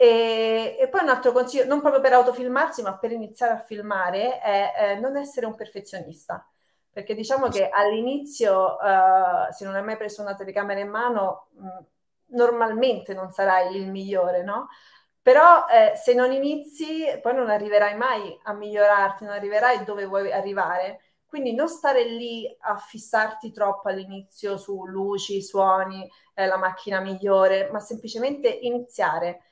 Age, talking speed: 30-49, 155 wpm